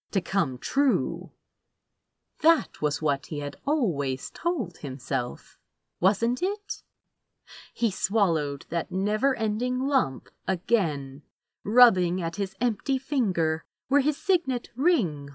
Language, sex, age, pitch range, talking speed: English, female, 30-49, 165-280 Hz, 110 wpm